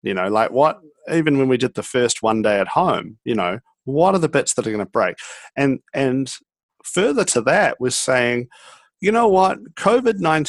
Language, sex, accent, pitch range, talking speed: English, male, Australian, 110-155 Hz, 205 wpm